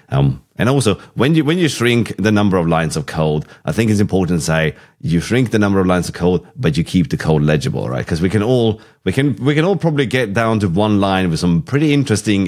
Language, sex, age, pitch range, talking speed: English, male, 30-49, 80-120 Hz, 260 wpm